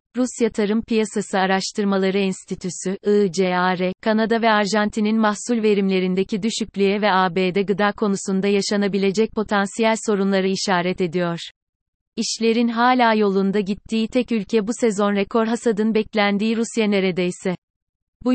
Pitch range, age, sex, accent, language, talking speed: 195-225 Hz, 30-49, female, native, Turkish, 115 wpm